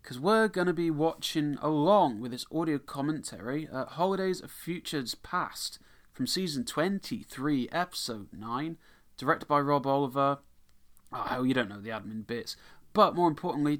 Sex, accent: male, British